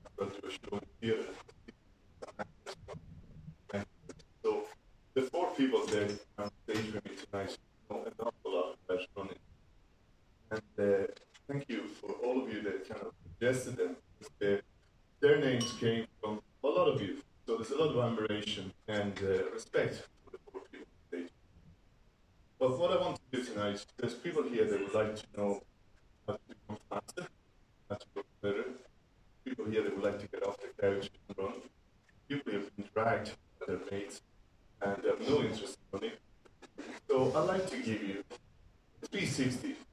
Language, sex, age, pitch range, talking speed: English, male, 30-49, 100-155 Hz, 170 wpm